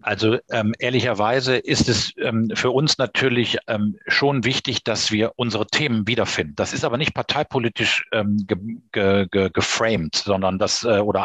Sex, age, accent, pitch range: male, 40-59, German, 105-130 Hz